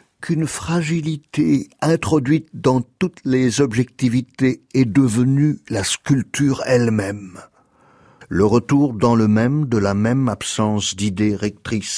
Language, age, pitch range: French, 60-79, 110-145 Hz